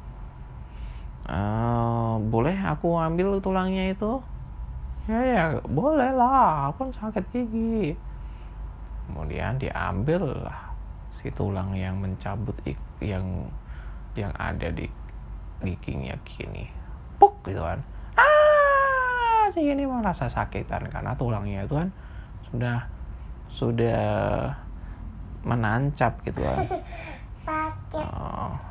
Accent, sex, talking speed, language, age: native, male, 90 wpm, Indonesian, 20-39